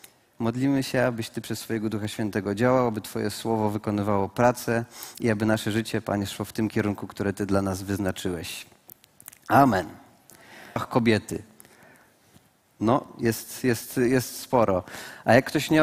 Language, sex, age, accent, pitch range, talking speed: Polish, male, 30-49, native, 125-165 Hz, 150 wpm